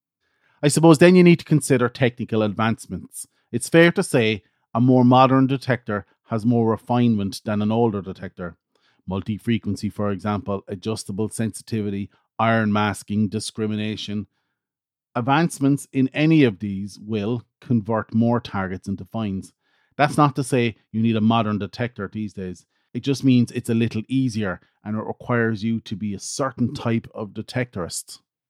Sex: male